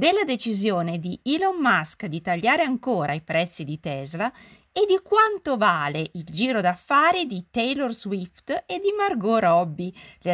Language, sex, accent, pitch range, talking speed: Italian, female, native, 165-240 Hz, 155 wpm